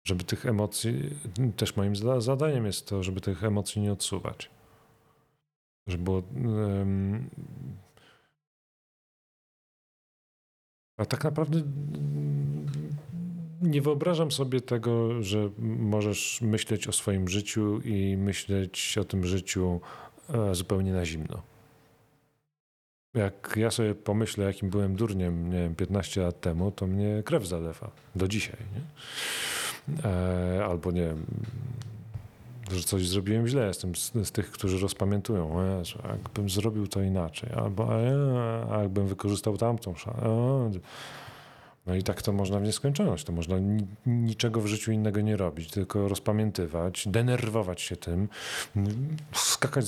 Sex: male